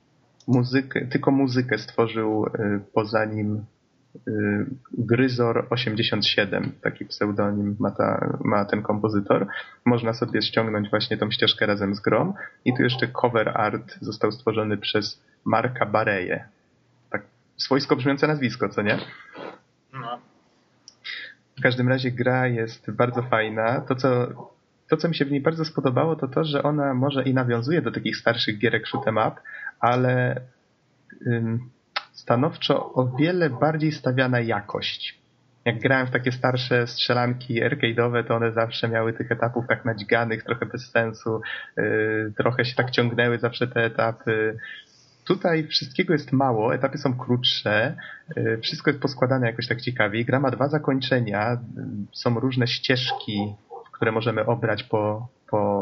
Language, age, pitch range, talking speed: Polish, 20-39, 110-130 Hz, 140 wpm